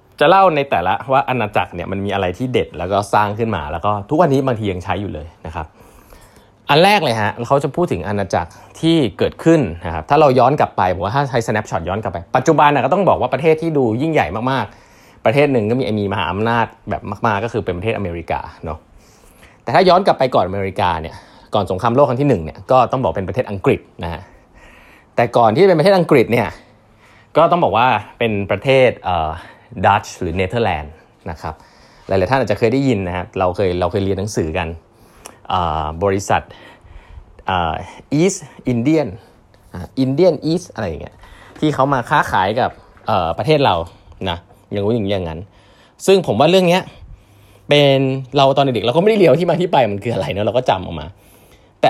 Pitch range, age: 95-135 Hz, 20-39